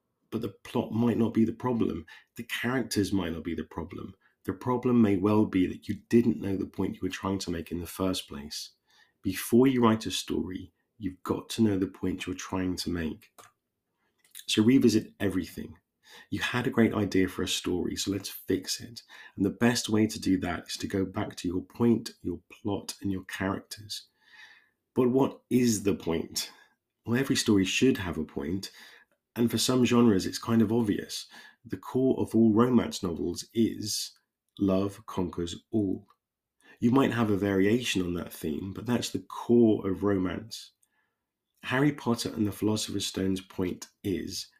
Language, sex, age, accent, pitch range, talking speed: English, male, 30-49, British, 95-120 Hz, 185 wpm